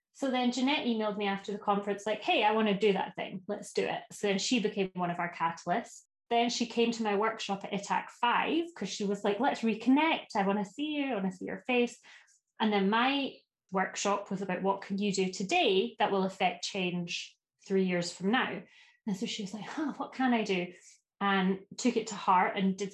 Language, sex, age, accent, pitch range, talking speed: English, female, 20-39, British, 190-225 Hz, 235 wpm